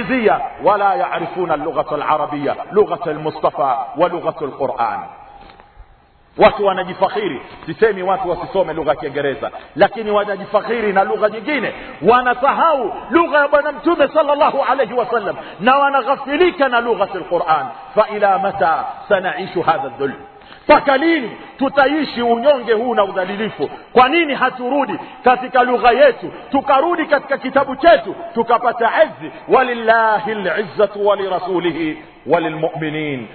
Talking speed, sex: 105 wpm, male